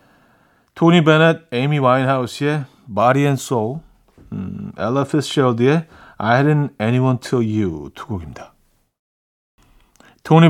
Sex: male